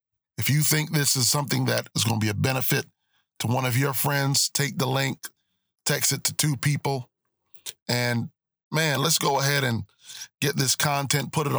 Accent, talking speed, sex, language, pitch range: American, 190 wpm, male, English, 120-145 Hz